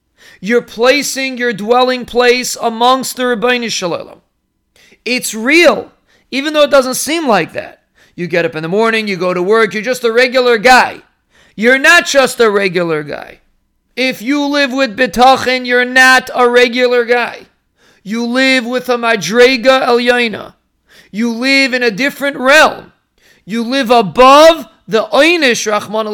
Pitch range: 210-260 Hz